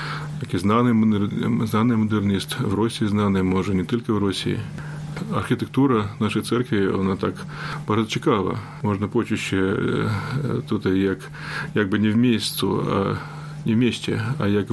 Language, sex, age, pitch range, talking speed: Polish, male, 30-49, 100-150 Hz, 120 wpm